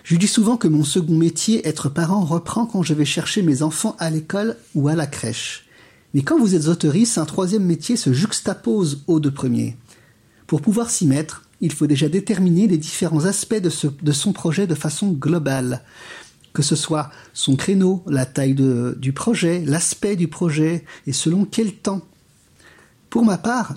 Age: 50-69